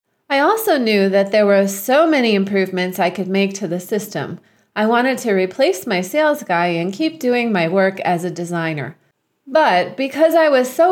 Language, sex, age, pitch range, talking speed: English, female, 30-49, 185-265 Hz, 190 wpm